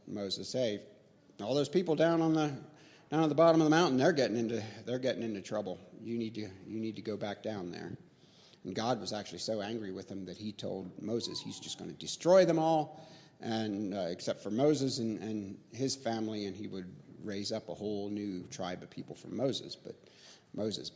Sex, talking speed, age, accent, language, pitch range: male, 215 wpm, 40-59, American, English, 105-150 Hz